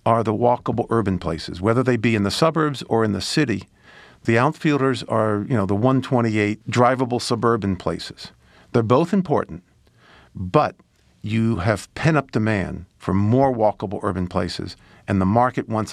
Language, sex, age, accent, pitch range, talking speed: English, male, 50-69, American, 100-125 Hz, 160 wpm